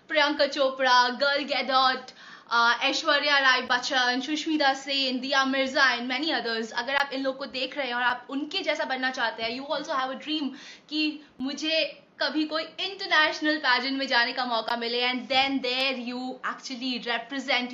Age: 20-39